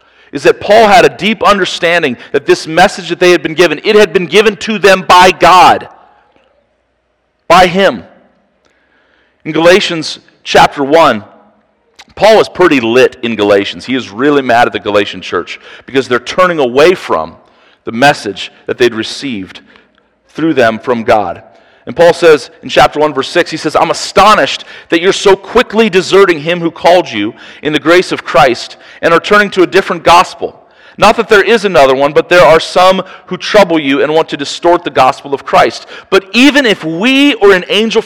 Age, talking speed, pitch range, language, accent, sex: 40-59, 185 wpm, 170-215 Hz, English, American, male